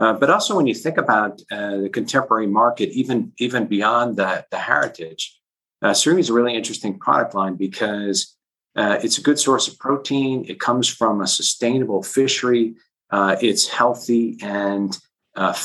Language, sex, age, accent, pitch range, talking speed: English, male, 50-69, American, 100-125 Hz, 165 wpm